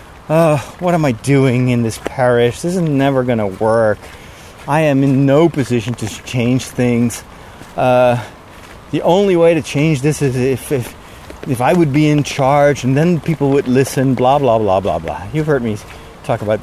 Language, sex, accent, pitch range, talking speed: English, male, American, 120-165 Hz, 190 wpm